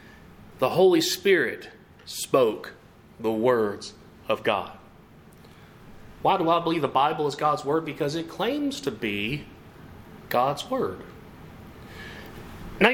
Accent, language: American, English